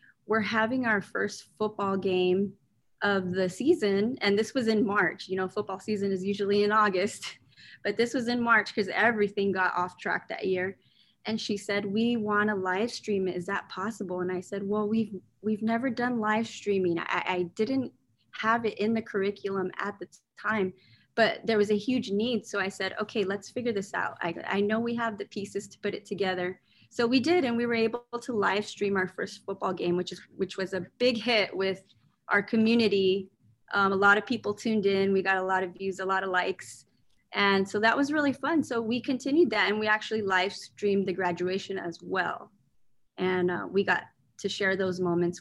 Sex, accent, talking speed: female, American, 210 wpm